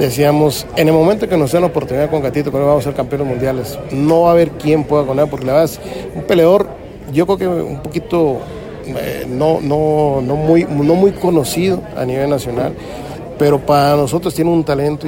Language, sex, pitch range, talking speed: Spanish, male, 135-165 Hz, 210 wpm